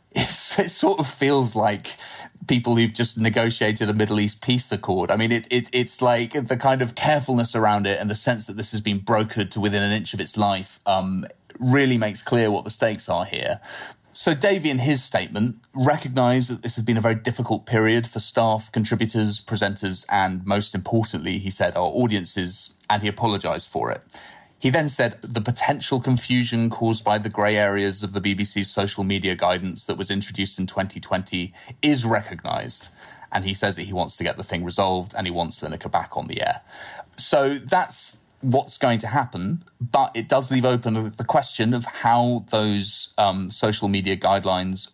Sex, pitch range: male, 100-125 Hz